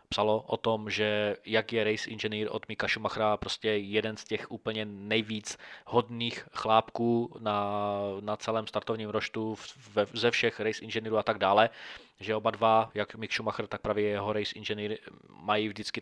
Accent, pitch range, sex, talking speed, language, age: native, 105-120 Hz, male, 170 wpm, Czech, 20-39